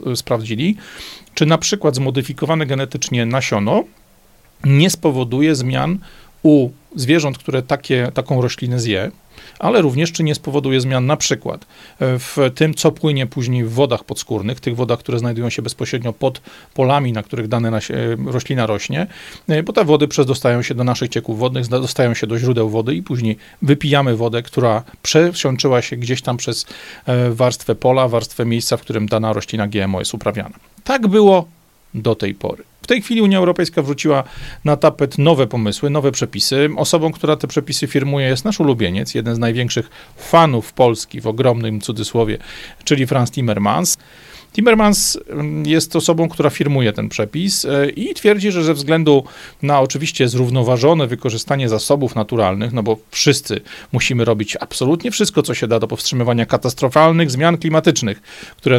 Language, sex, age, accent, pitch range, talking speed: Polish, male, 40-59, native, 120-155 Hz, 155 wpm